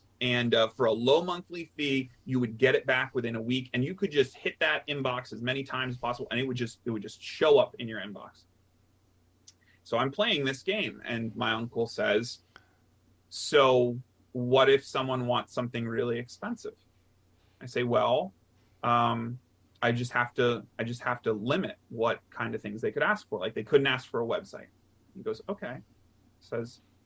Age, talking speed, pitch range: 30-49, 195 wpm, 105-135 Hz